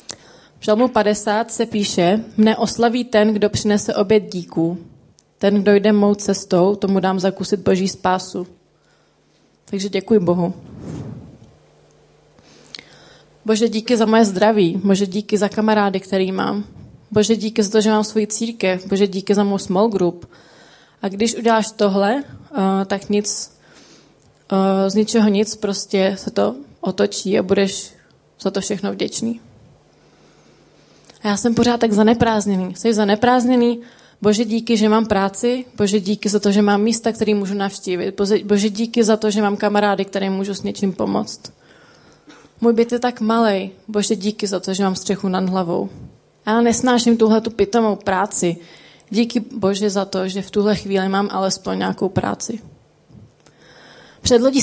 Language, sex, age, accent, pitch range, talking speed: Czech, female, 20-39, native, 195-220 Hz, 150 wpm